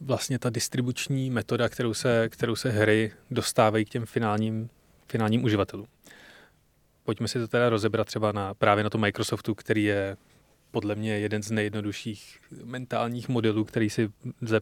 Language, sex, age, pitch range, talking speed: Czech, male, 20-39, 110-125 Hz, 150 wpm